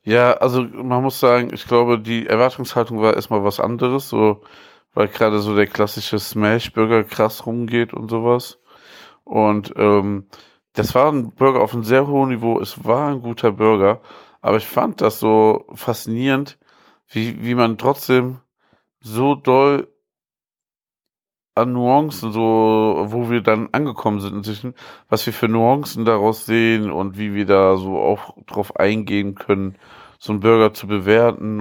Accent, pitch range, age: German, 105-120 Hz, 50-69